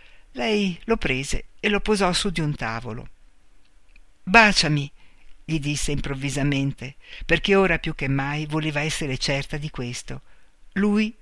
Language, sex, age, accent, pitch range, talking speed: Italian, female, 50-69, native, 135-180 Hz, 135 wpm